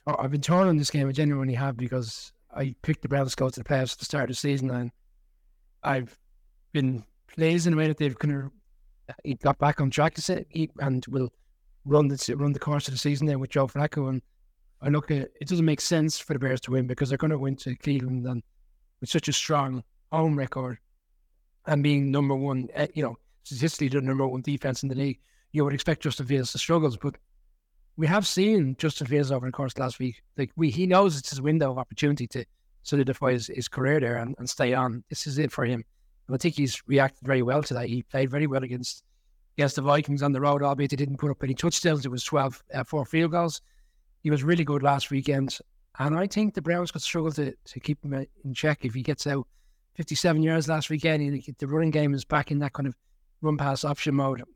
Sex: male